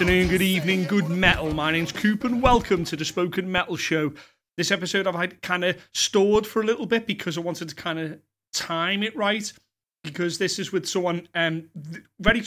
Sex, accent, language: male, British, English